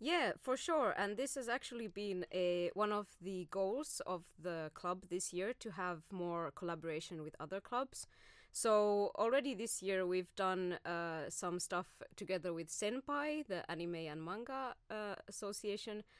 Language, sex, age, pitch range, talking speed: Finnish, female, 20-39, 175-235 Hz, 160 wpm